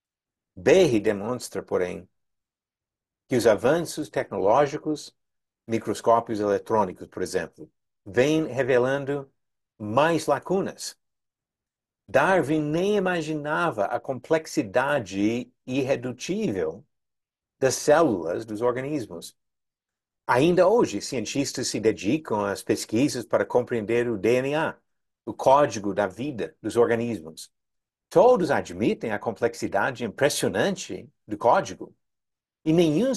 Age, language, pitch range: 60-79, Portuguese, 115-155 Hz